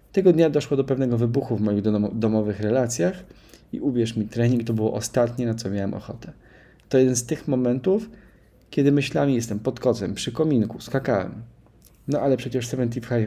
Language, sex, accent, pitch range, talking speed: Polish, male, native, 105-130 Hz, 175 wpm